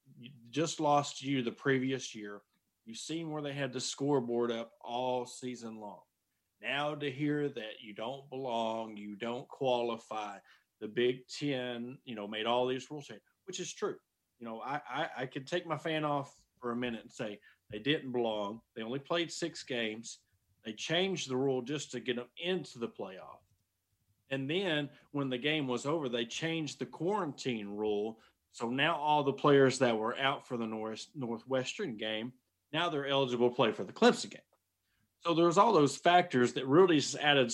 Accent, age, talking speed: American, 40-59, 190 wpm